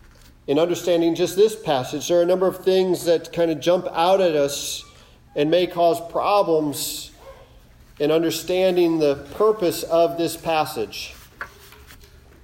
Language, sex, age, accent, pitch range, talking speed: English, male, 40-59, American, 140-180 Hz, 140 wpm